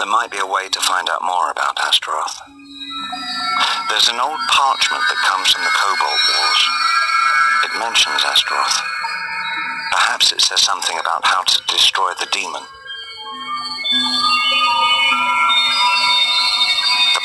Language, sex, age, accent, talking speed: English, male, 50-69, British, 120 wpm